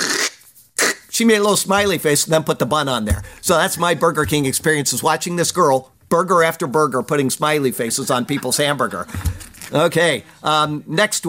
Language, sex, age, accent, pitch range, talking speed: English, male, 50-69, American, 135-180 Hz, 185 wpm